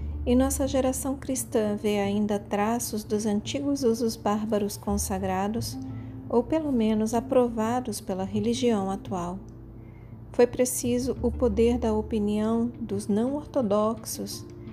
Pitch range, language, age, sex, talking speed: 190-240 Hz, Portuguese, 40-59, female, 110 wpm